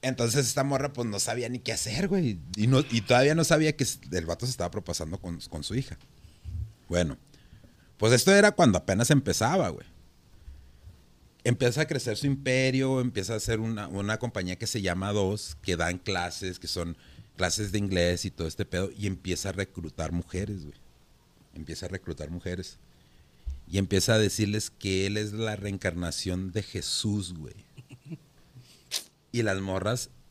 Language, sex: Spanish, male